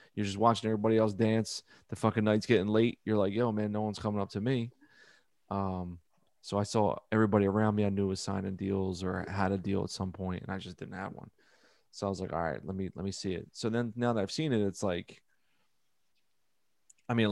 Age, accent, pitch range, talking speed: 20-39, American, 95-110 Hz, 240 wpm